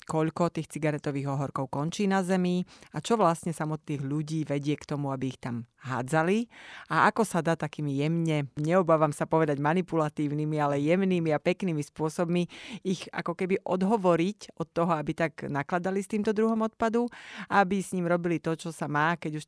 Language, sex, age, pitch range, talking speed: Slovak, female, 30-49, 150-175 Hz, 180 wpm